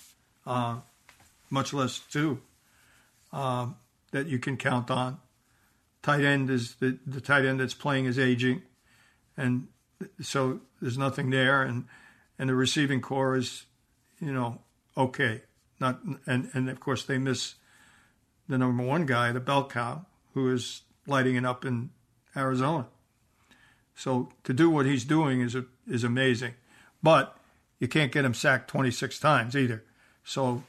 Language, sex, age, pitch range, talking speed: English, male, 60-79, 120-140 Hz, 150 wpm